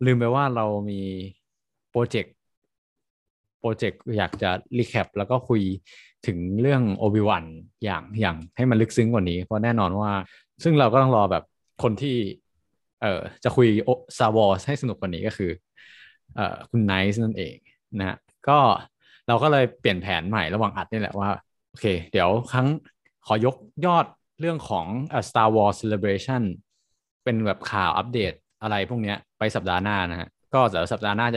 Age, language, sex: 20-39, Thai, male